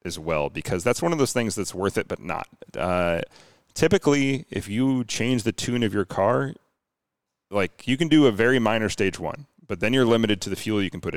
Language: English